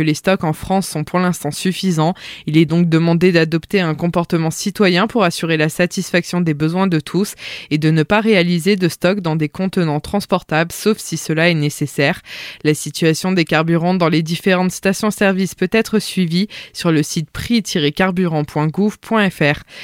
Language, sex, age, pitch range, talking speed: French, female, 20-39, 160-190 Hz, 165 wpm